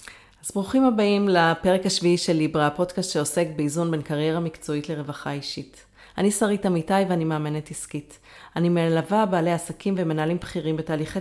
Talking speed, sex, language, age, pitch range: 150 wpm, female, Hebrew, 30-49, 160-195 Hz